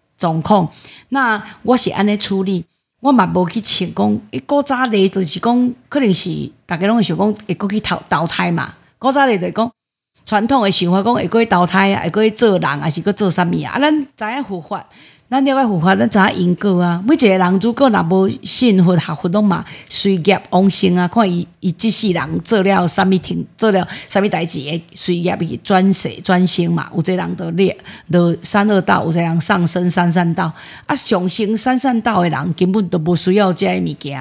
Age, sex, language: 50-69, female, Chinese